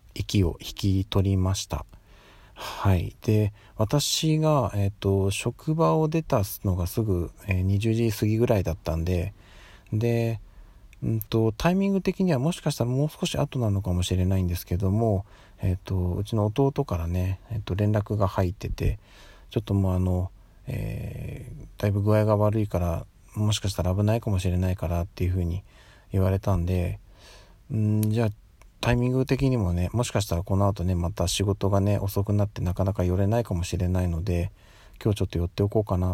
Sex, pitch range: male, 95-110 Hz